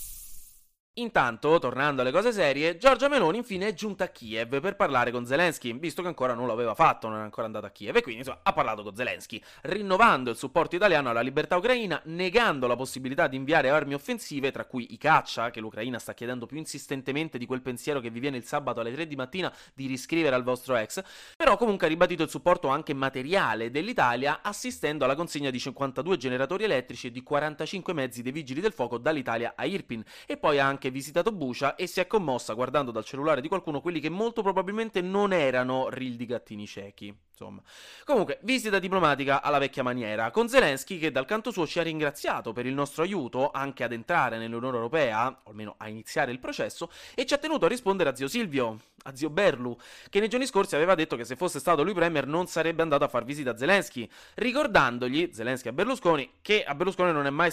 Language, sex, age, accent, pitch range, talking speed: Italian, male, 20-39, native, 125-180 Hz, 210 wpm